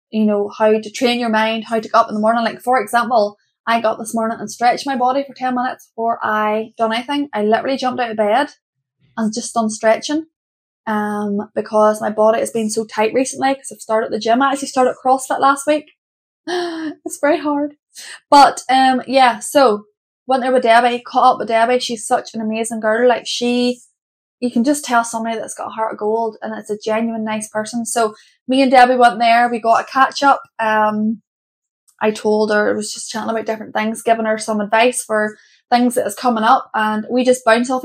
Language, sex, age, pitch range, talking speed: English, female, 10-29, 220-255 Hz, 220 wpm